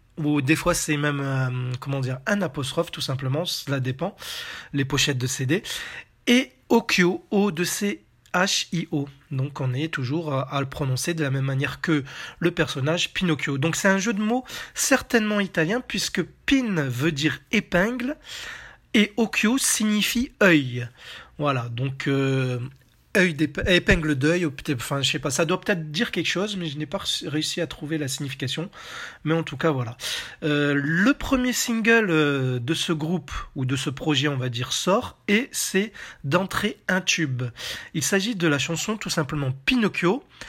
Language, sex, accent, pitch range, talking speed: French, male, French, 140-205 Hz, 165 wpm